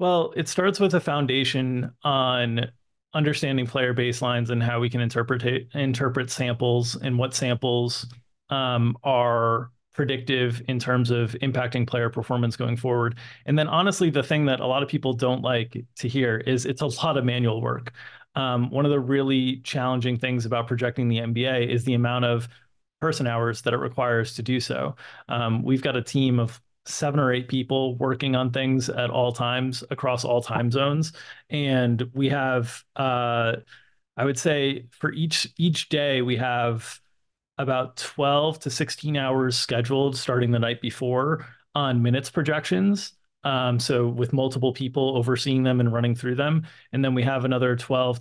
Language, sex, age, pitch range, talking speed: English, male, 30-49, 120-135 Hz, 170 wpm